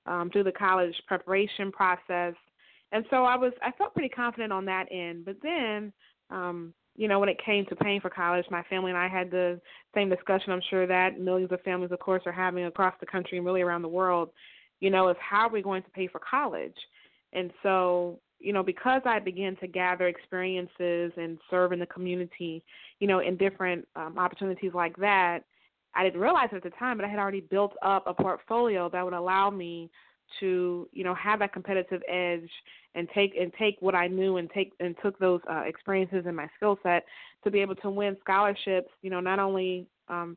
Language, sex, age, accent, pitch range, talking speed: English, female, 20-39, American, 180-200 Hz, 215 wpm